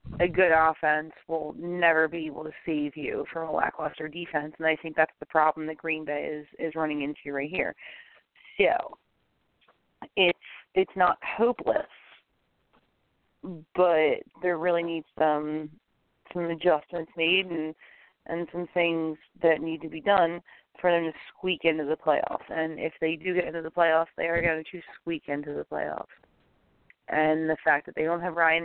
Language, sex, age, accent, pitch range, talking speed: English, female, 30-49, American, 155-170 Hz, 170 wpm